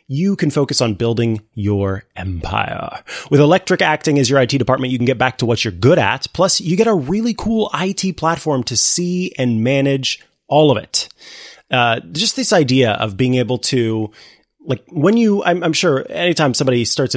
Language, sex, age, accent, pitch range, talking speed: English, male, 30-49, American, 105-145 Hz, 180 wpm